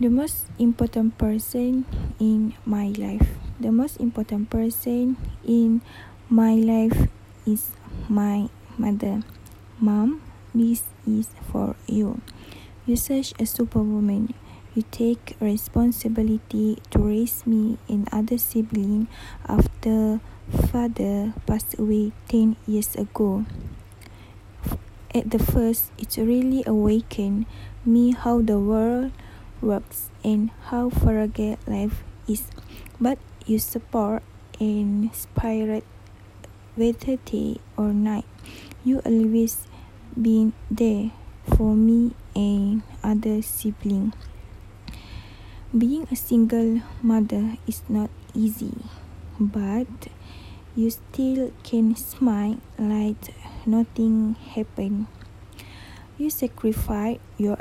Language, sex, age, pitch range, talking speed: Malay, female, 20-39, 210-230 Hz, 100 wpm